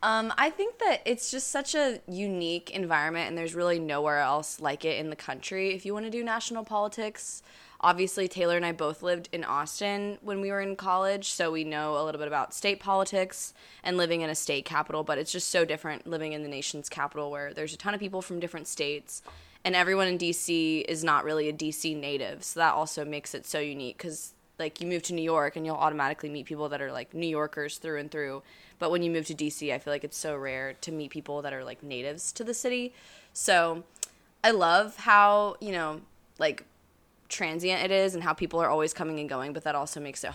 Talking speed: 230 wpm